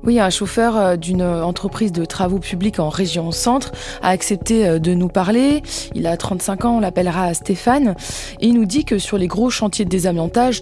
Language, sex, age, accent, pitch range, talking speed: French, female, 20-39, French, 185-230 Hz, 190 wpm